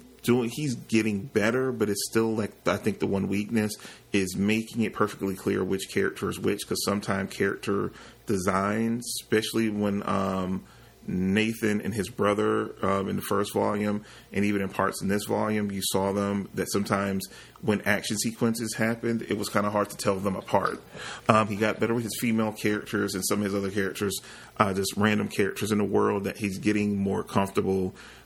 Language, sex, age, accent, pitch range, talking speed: English, male, 30-49, American, 95-110 Hz, 190 wpm